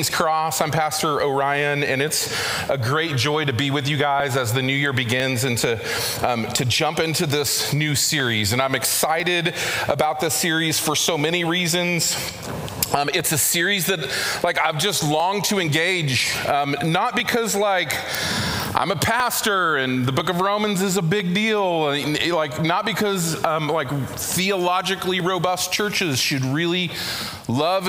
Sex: male